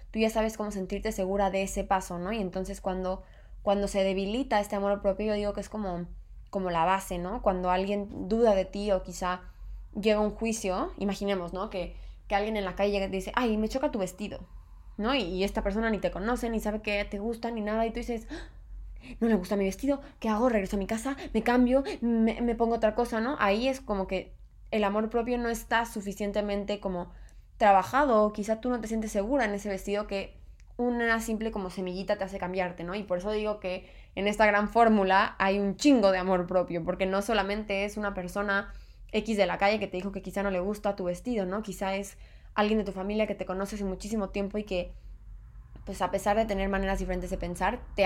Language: Spanish